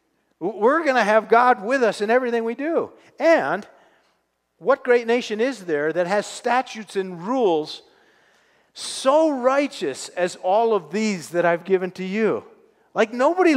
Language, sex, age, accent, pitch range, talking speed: English, male, 50-69, American, 150-230 Hz, 155 wpm